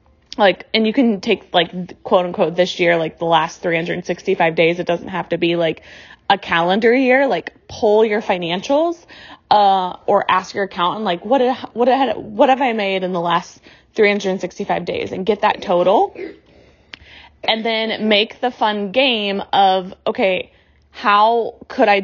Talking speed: 170 wpm